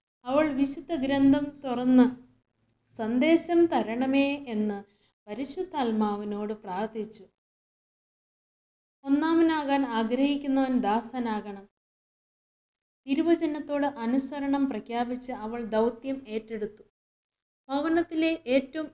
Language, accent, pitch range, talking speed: Malayalam, native, 230-285 Hz, 65 wpm